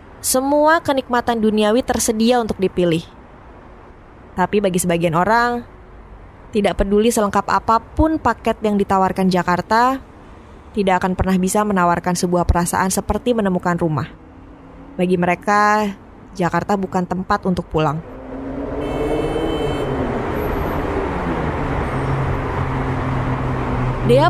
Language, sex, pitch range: Indonesian, female, 170-210 Hz